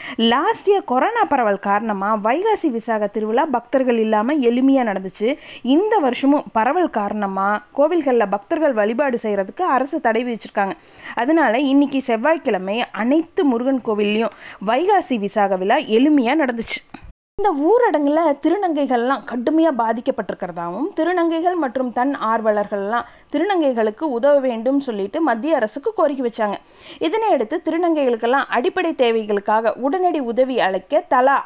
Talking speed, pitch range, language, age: 110 wpm, 225-325 Hz, Tamil, 20-39